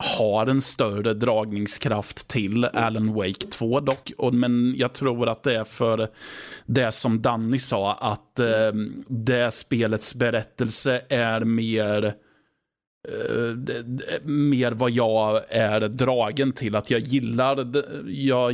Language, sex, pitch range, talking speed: Swedish, male, 105-125 Hz, 115 wpm